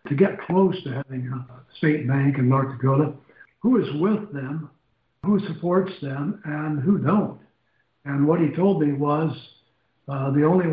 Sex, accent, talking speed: male, American, 170 wpm